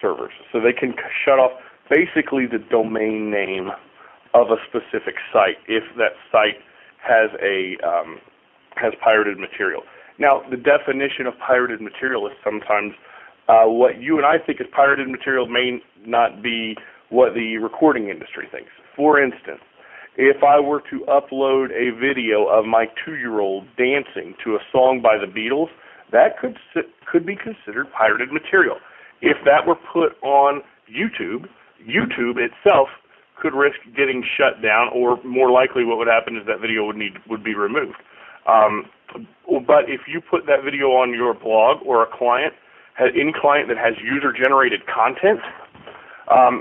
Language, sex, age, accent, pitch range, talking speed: English, male, 40-59, American, 115-155 Hz, 155 wpm